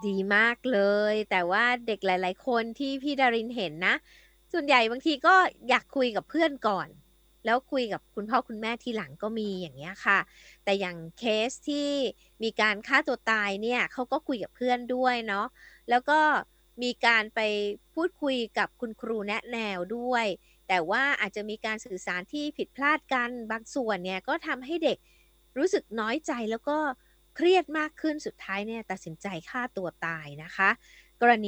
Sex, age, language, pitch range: female, 20-39, Thai, 210-275 Hz